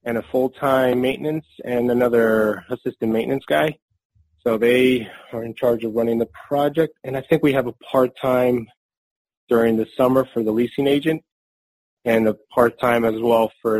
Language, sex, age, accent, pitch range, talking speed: English, male, 30-49, American, 110-130 Hz, 165 wpm